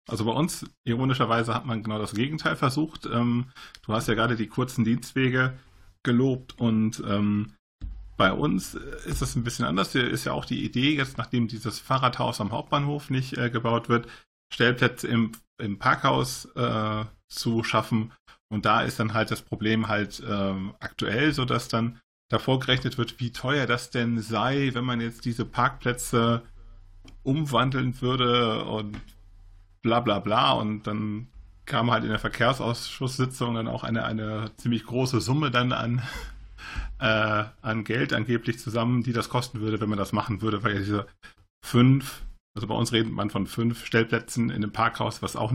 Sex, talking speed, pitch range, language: male, 160 wpm, 105-125 Hz, German